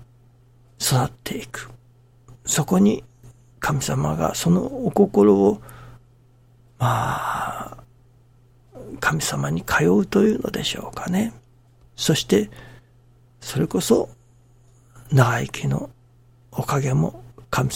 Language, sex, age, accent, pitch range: Japanese, male, 60-79, native, 120-140 Hz